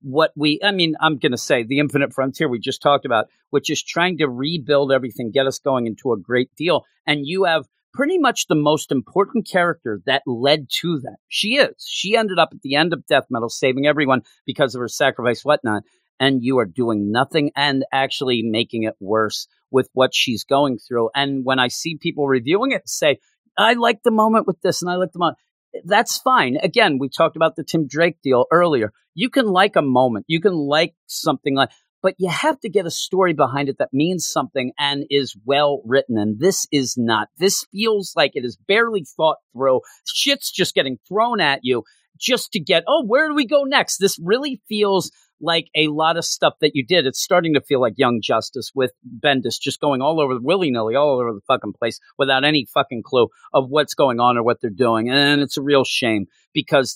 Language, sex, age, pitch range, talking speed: English, male, 40-59, 130-175 Hz, 215 wpm